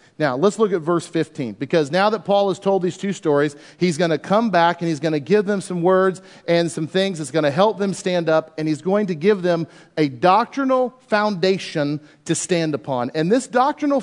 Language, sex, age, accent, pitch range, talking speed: English, male, 40-59, American, 160-215 Hz, 225 wpm